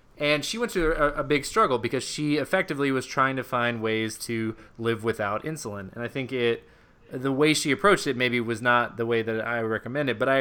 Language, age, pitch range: English, 20-39, 110-130 Hz